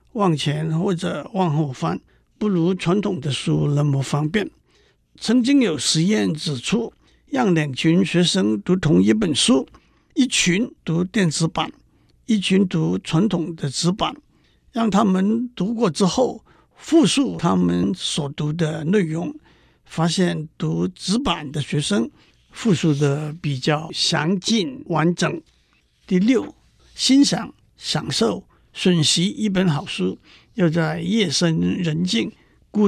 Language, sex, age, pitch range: Chinese, male, 60-79, 155-200 Hz